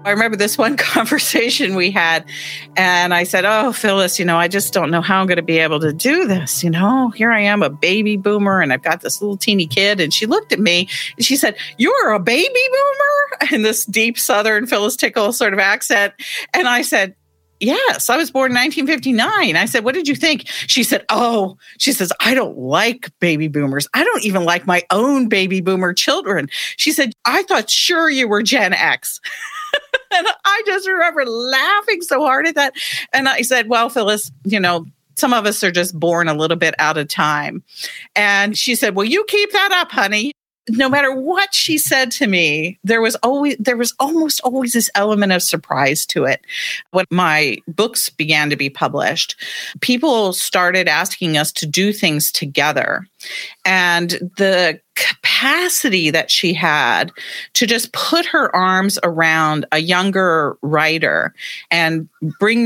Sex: female